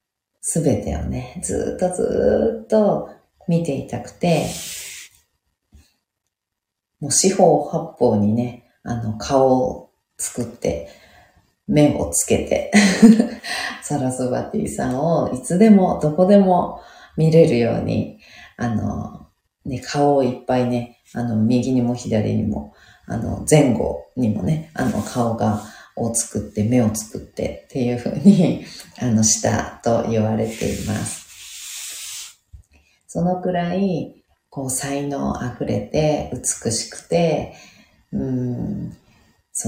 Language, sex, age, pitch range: Japanese, female, 40-59, 110-155 Hz